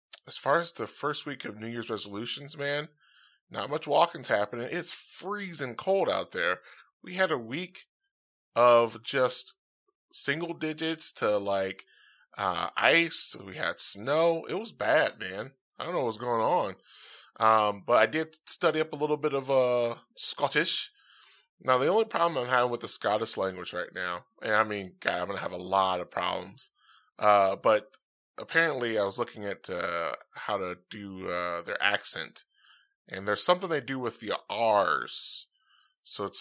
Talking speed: 175 wpm